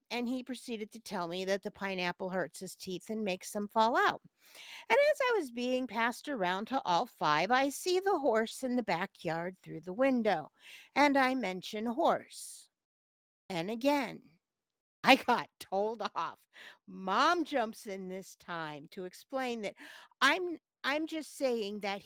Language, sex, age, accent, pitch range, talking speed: English, female, 50-69, American, 205-275 Hz, 165 wpm